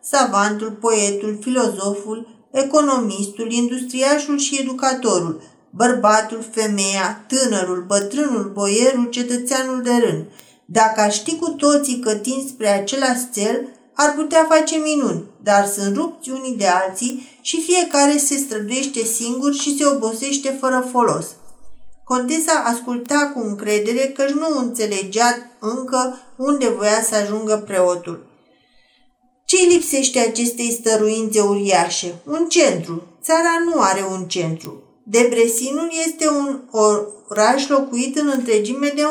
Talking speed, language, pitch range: 120 wpm, Romanian, 215-275 Hz